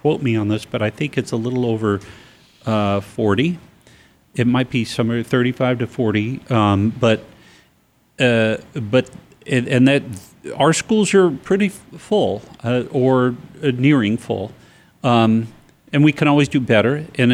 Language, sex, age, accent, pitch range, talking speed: English, male, 40-59, American, 105-125 Hz, 155 wpm